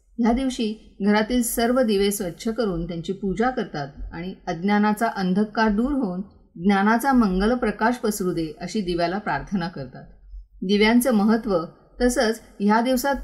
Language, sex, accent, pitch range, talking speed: Marathi, female, native, 180-230 Hz, 130 wpm